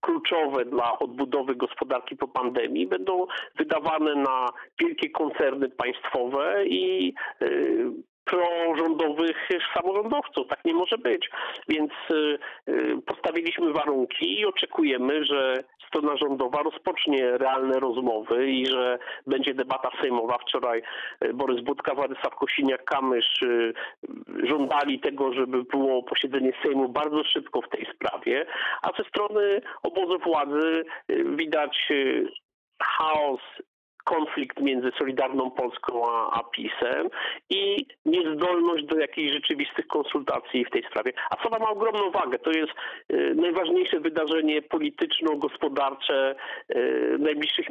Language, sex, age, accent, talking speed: Polish, male, 50-69, native, 105 wpm